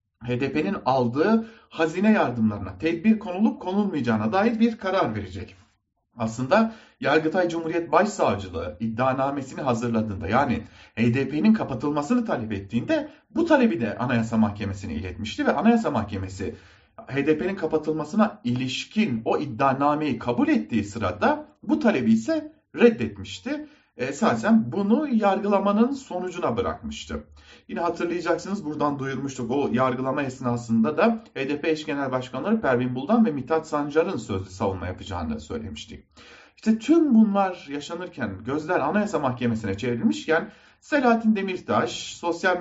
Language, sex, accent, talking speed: German, male, Turkish, 115 wpm